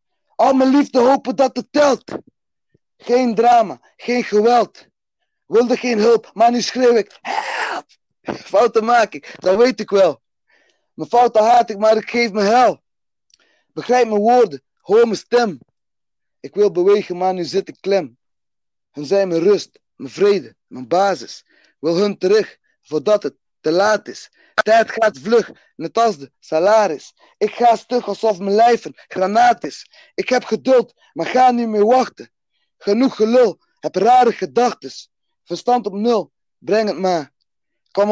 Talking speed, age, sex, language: 160 wpm, 20-39, male, Dutch